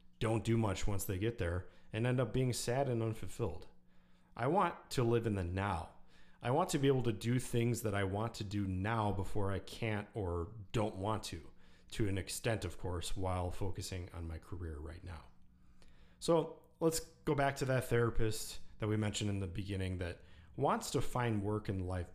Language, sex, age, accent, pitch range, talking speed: English, male, 30-49, American, 95-120 Hz, 200 wpm